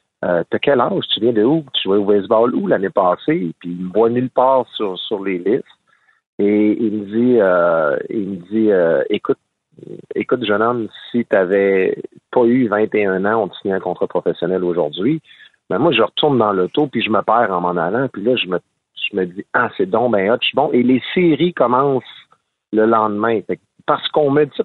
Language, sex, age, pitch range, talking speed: French, male, 50-69, 95-130 Hz, 220 wpm